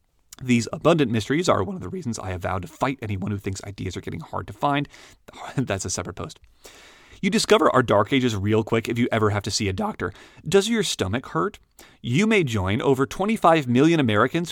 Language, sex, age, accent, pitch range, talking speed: English, male, 30-49, American, 105-150 Hz, 215 wpm